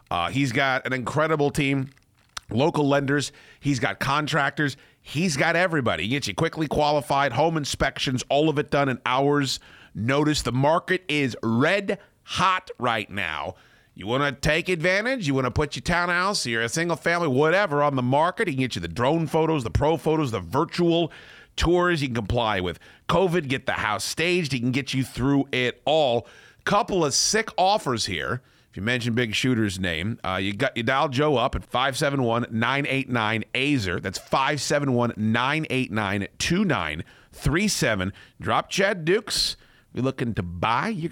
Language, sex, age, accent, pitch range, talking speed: English, male, 40-59, American, 115-160 Hz, 165 wpm